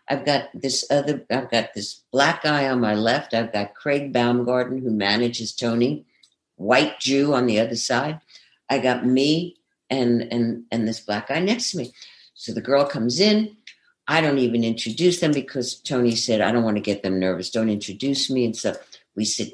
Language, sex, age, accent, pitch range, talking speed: English, female, 60-79, American, 120-175 Hz, 195 wpm